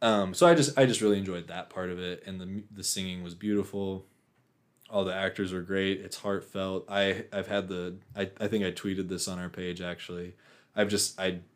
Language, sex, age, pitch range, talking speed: English, male, 20-39, 90-105 Hz, 220 wpm